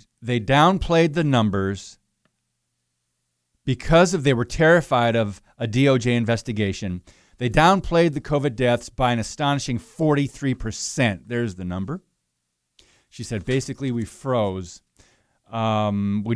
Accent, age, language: American, 40-59, English